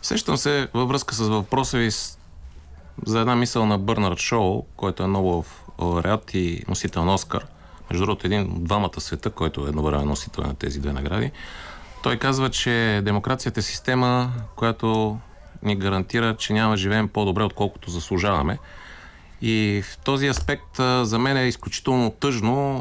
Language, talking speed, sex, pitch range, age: Bulgarian, 165 wpm, male, 90-120 Hz, 30-49